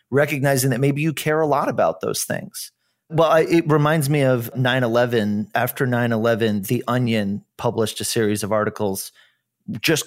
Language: English